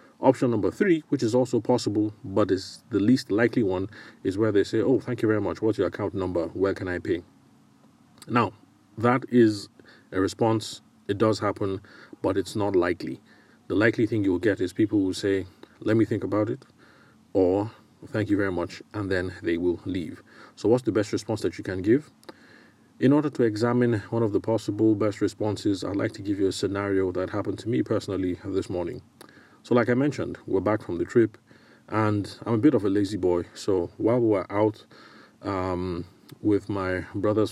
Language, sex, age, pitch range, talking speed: English, male, 30-49, 95-110 Hz, 200 wpm